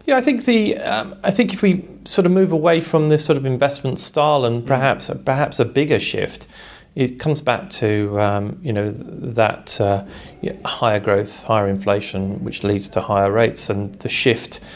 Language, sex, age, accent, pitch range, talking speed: English, male, 40-59, British, 105-130 Hz, 190 wpm